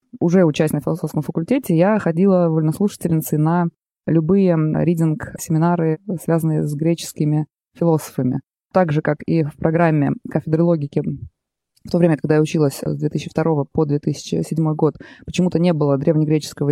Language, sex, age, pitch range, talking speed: Russian, female, 20-39, 155-180 Hz, 135 wpm